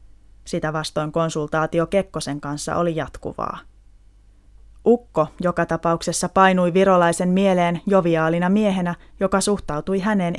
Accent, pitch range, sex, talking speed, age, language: native, 145-190 Hz, female, 105 wpm, 20-39, Finnish